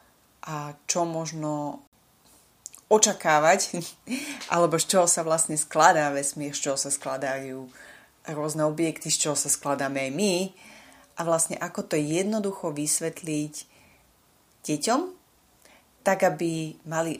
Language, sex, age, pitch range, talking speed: English, female, 30-49, 145-185 Hz, 115 wpm